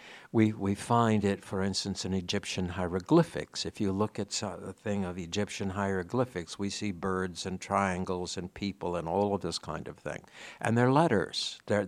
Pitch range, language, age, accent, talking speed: 95-120 Hz, English, 60-79, American, 180 wpm